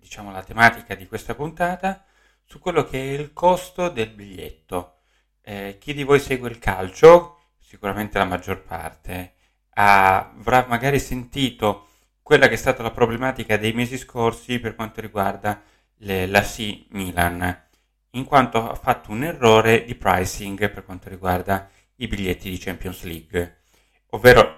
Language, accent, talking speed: Italian, native, 150 wpm